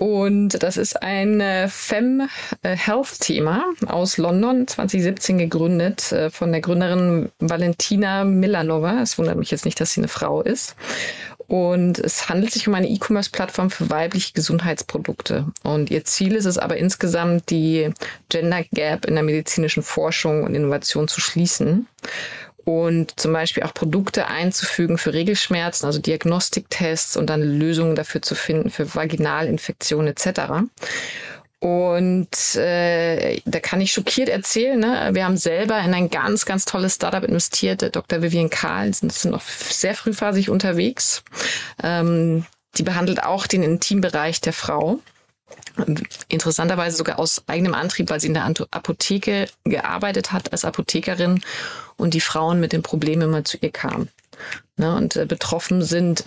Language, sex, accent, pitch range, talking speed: German, female, German, 160-195 Hz, 145 wpm